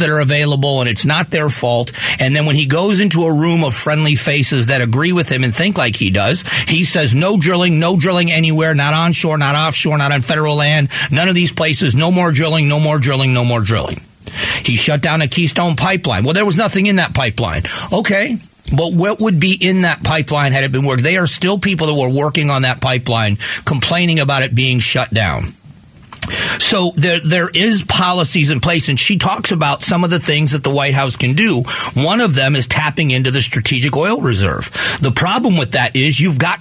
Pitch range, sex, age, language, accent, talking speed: 135-175 Hz, male, 40-59, English, American, 220 wpm